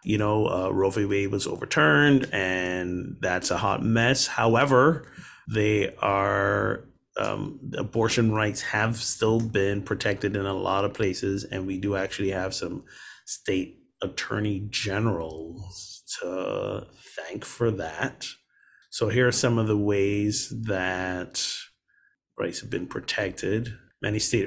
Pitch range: 95-125 Hz